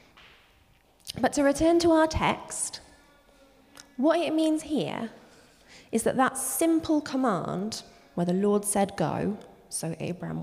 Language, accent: English, British